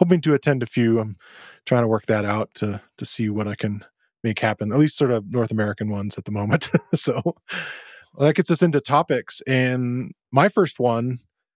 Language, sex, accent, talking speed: English, male, American, 210 wpm